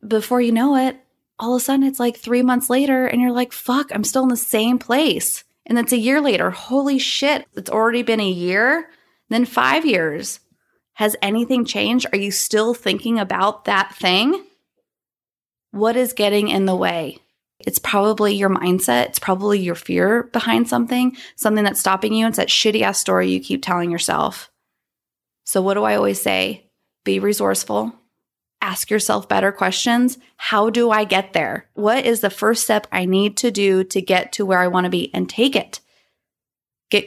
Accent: American